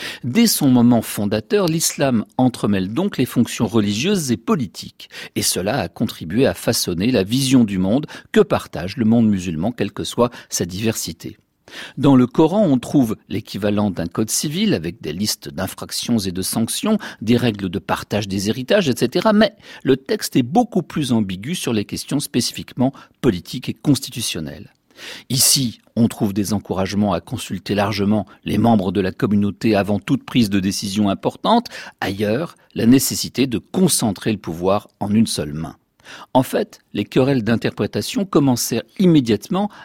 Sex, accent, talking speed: male, French, 160 wpm